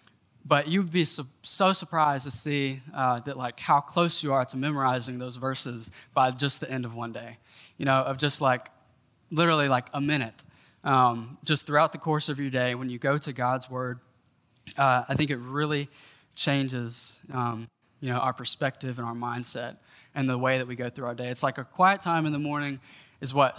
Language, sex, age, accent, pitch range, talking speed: English, male, 20-39, American, 125-145 Hz, 205 wpm